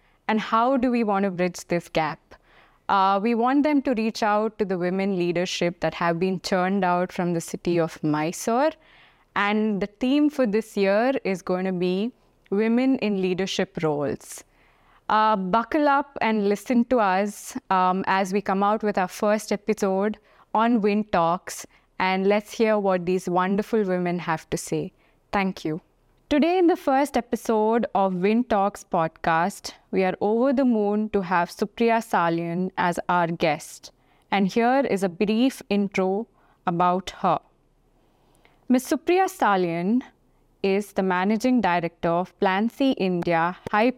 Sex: female